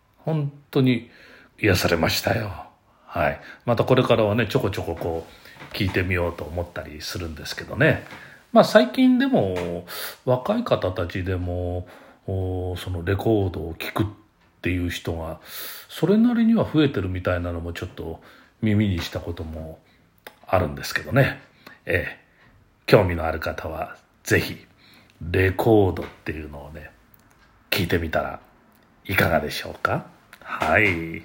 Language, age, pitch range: Japanese, 40-59, 85-135 Hz